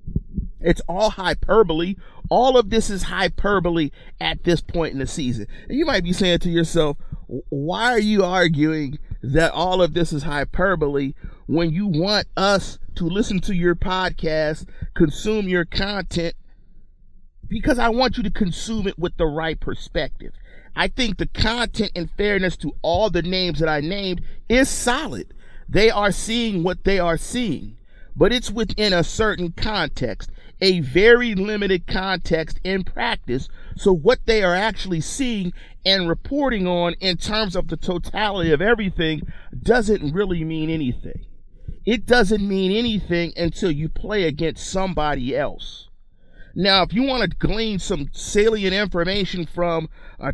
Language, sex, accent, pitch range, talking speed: English, male, American, 160-205 Hz, 155 wpm